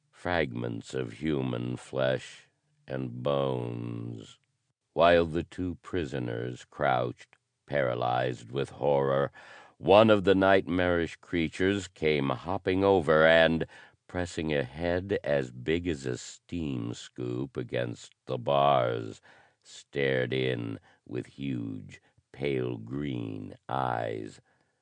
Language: English